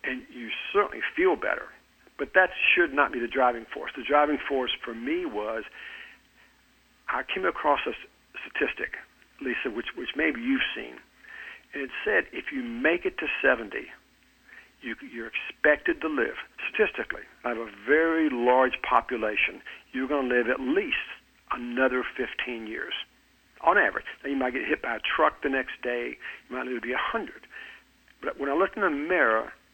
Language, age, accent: English, 60-79, American